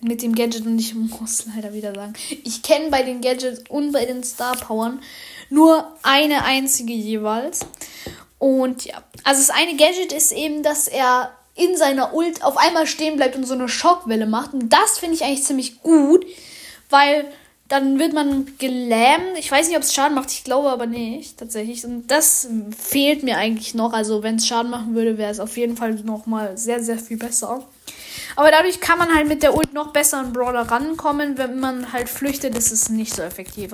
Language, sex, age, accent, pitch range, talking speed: German, female, 10-29, German, 230-290 Hz, 200 wpm